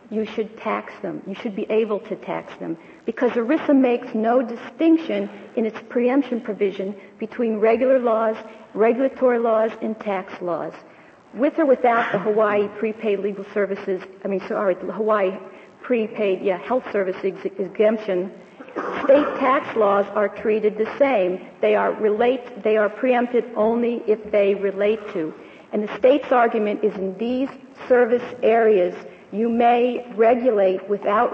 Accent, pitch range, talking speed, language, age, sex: American, 200-235 Hz, 145 wpm, English, 50-69, female